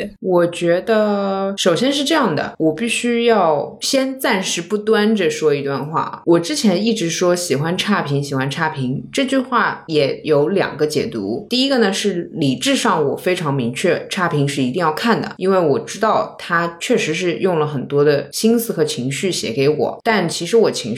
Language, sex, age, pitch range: Chinese, female, 20-39, 145-220 Hz